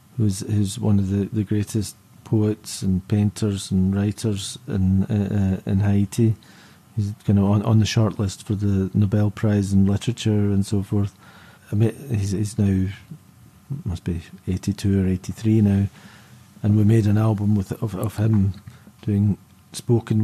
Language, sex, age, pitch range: English, male, 40-59, 100-115 Hz